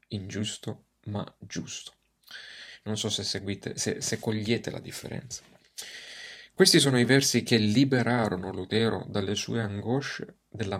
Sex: male